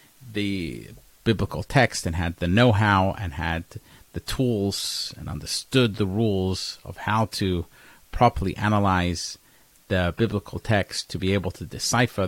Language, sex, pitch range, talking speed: English, male, 90-115 Hz, 135 wpm